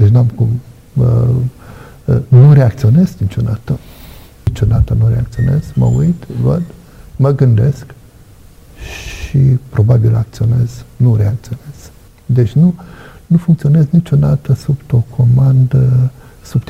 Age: 60-79